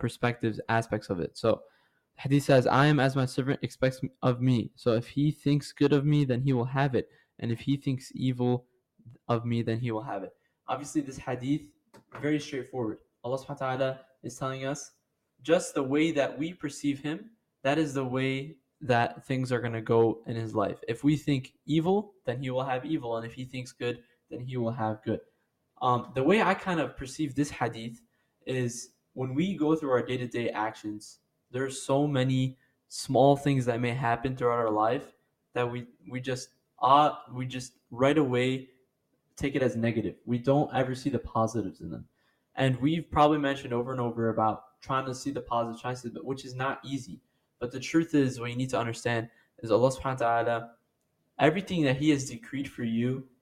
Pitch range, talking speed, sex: 120-140 Hz, 200 wpm, male